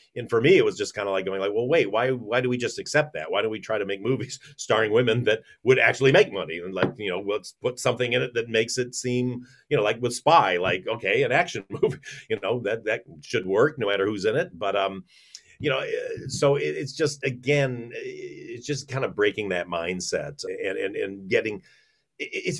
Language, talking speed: English, 235 wpm